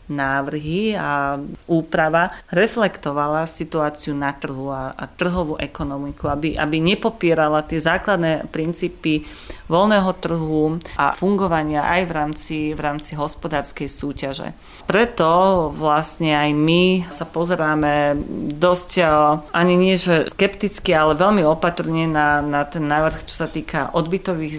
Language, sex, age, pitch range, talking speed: Slovak, female, 30-49, 150-175 Hz, 120 wpm